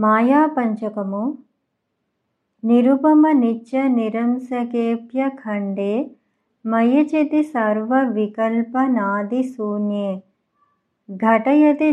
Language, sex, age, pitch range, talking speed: Telugu, male, 50-69, 210-260 Hz, 60 wpm